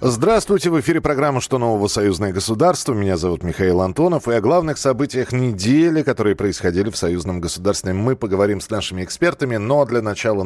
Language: Russian